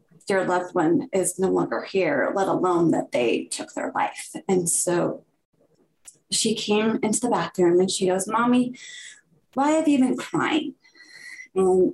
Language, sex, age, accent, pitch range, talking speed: English, female, 20-39, American, 185-270 Hz, 155 wpm